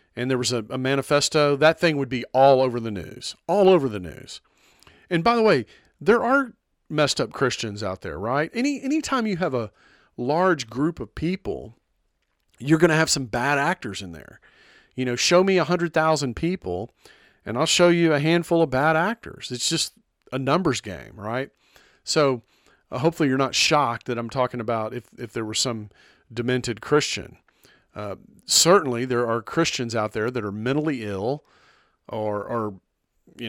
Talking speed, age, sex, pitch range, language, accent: 180 wpm, 40-59, male, 115-155 Hz, English, American